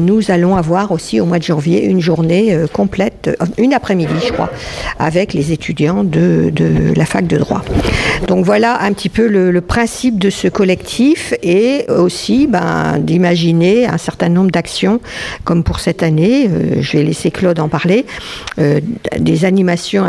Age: 50-69